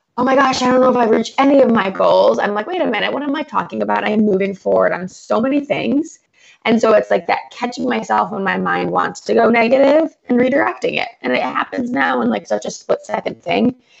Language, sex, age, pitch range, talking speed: English, female, 20-39, 185-255 Hz, 255 wpm